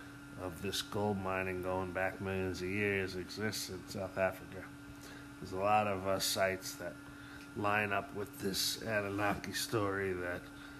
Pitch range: 95-140 Hz